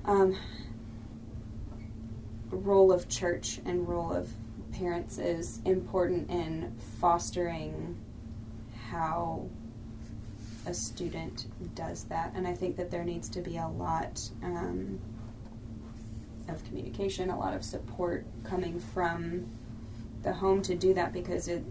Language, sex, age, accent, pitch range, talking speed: English, female, 20-39, American, 110-175 Hz, 115 wpm